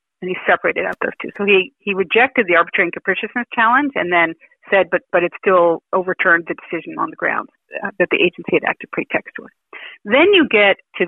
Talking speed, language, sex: 215 wpm, English, female